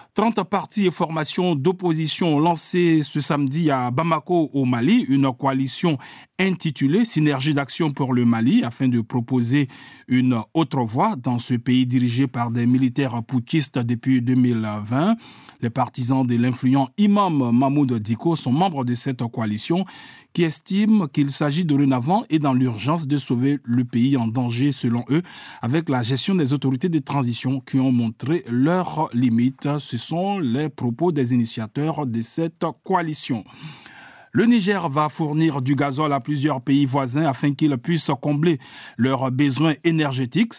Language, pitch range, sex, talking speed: French, 125-160 Hz, male, 155 wpm